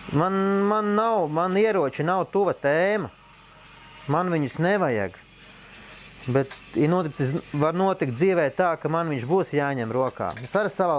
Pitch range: 125-165 Hz